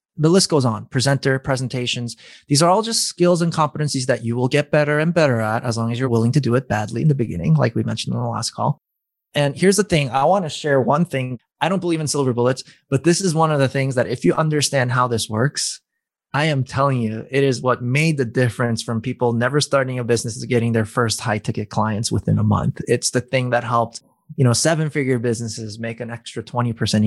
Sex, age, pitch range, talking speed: male, 20-39, 115-150 Hz, 245 wpm